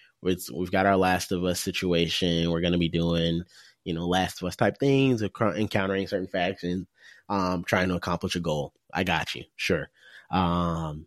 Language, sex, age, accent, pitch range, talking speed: English, male, 20-39, American, 90-105 Hz, 180 wpm